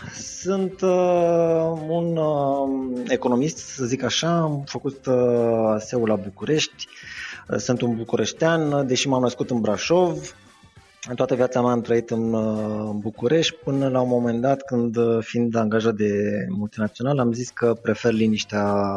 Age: 20-39